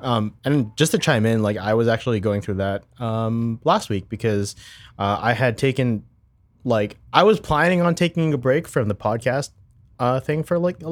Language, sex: English, male